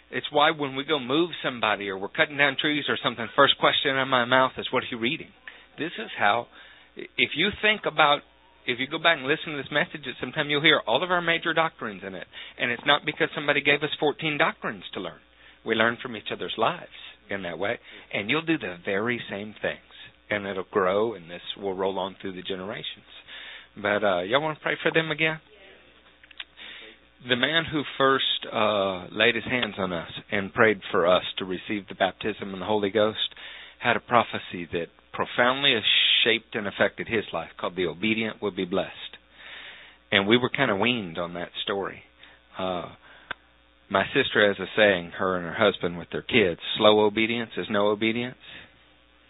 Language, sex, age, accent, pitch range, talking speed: English, male, 50-69, American, 95-150 Hz, 195 wpm